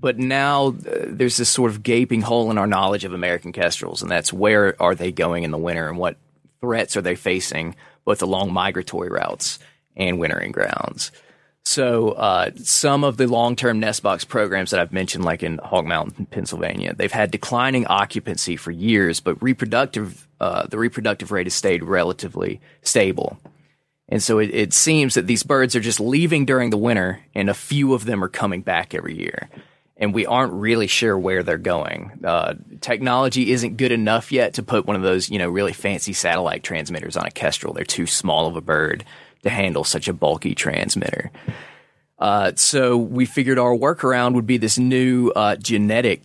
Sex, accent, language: male, American, English